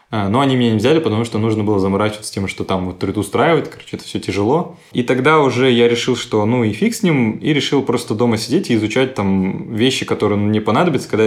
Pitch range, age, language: 100-120 Hz, 20-39, Russian